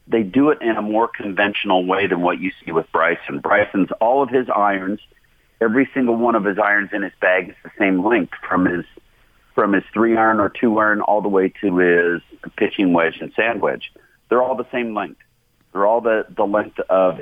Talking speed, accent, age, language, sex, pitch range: 215 wpm, American, 40-59, English, male, 95-115 Hz